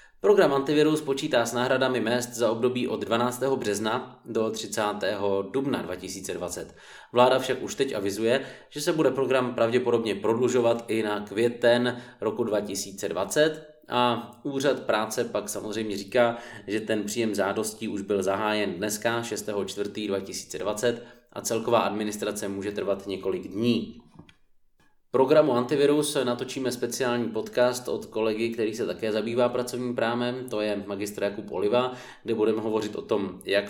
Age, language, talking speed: 20-39, Czech, 140 wpm